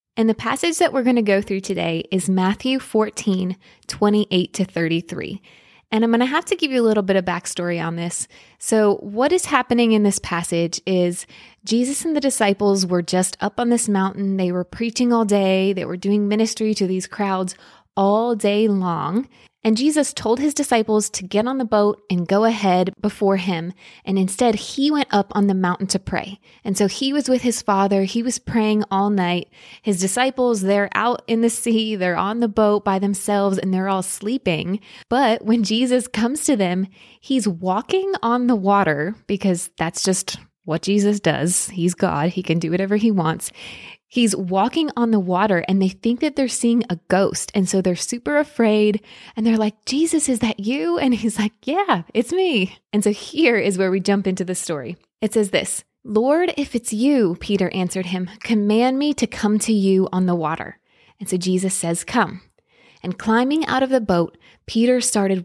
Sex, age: female, 20-39